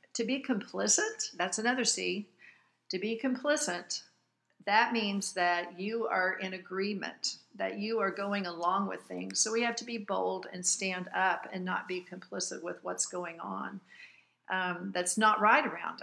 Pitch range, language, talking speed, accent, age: 190-235 Hz, English, 170 wpm, American, 50-69